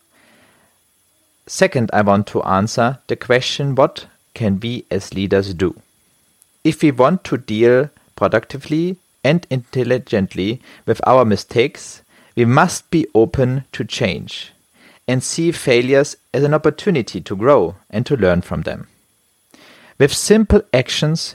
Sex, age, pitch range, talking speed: male, 40-59, 105-150 Hz, 130 wpm